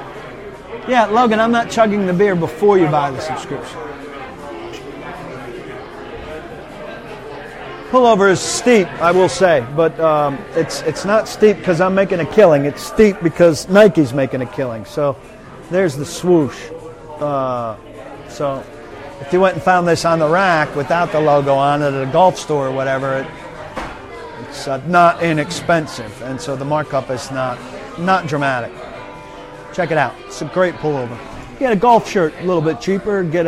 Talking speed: 165 wpm